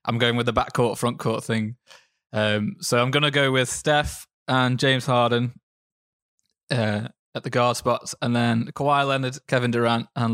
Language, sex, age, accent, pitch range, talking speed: English, male, 20-39, British, 115-145 Hz, 175 wpm